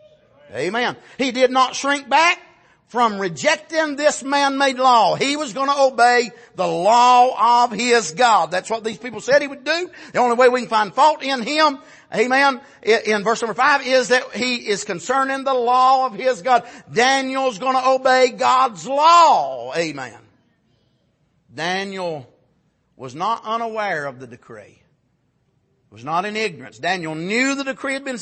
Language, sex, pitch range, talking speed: English, male, 155-255 Hz, 165 wpm